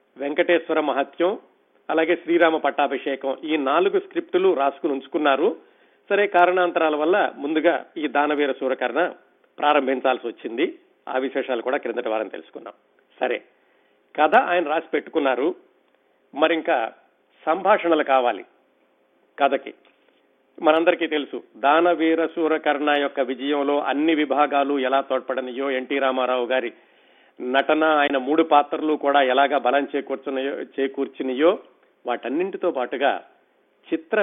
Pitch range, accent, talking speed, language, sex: 135-170 Hz, native, 105 wpm, Telugu, male